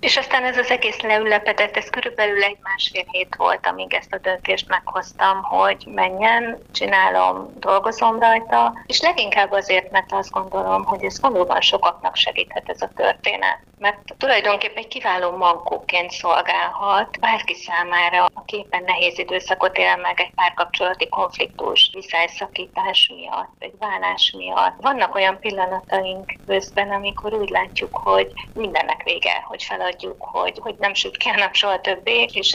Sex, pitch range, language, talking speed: female, 185-225 Hz, Hungarian, 140 wpm